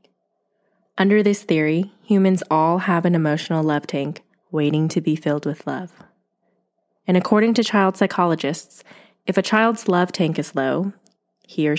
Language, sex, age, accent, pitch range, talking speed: English, female, 20-39, American, 155-195 Hz, 155 wpm